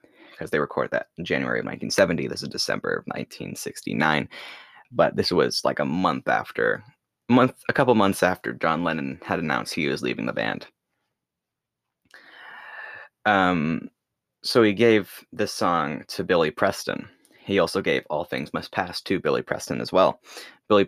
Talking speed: 160 wpm